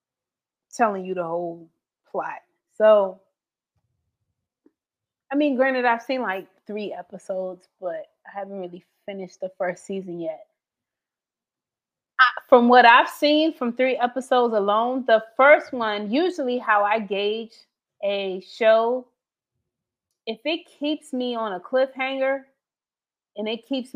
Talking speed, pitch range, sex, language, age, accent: 125 wpm, 195-255 Hz, female, English, 30-49, American